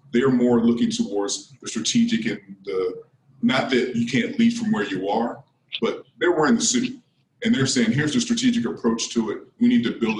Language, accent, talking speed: English, American, 205 wpm